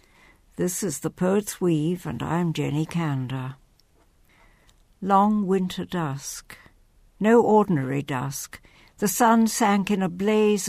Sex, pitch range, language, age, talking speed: female, 165-220 Hz, English, 60-79, 120 wpm